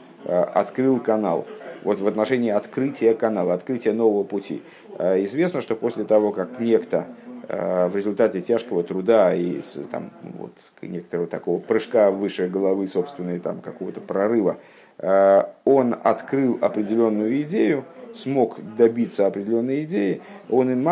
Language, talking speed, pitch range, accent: Russian, 115 wpm, 105-150 Hz, native